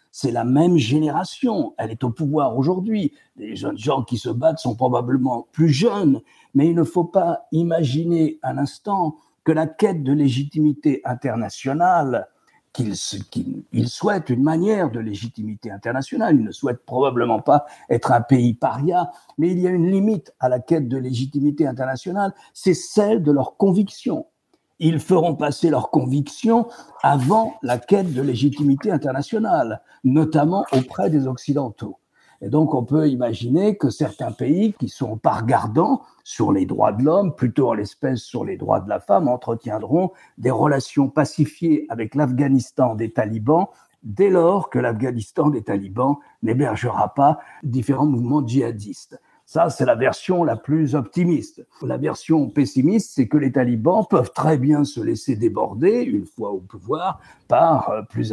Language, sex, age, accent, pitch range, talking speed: French, male, 60-79, French, 130-170 Hz, 160 wpm